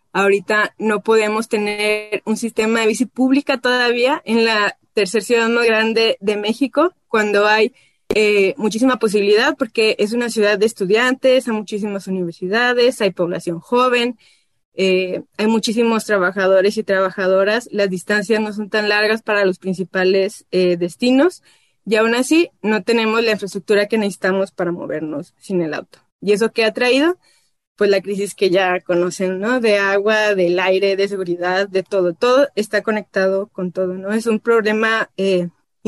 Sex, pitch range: female, 195-230 Hz